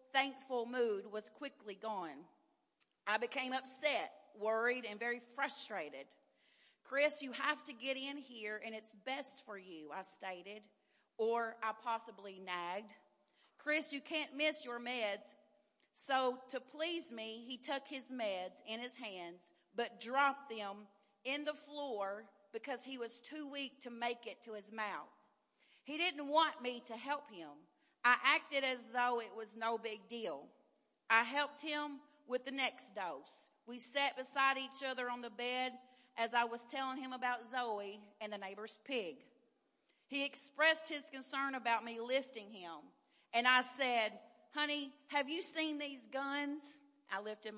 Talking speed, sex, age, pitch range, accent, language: 160 wpm, female, 40-59, 220-280 Hz, American, English